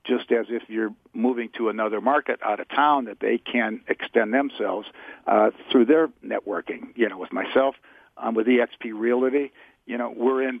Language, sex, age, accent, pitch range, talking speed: English, male, 50-69, American, 115-135 Hz, 180 wpm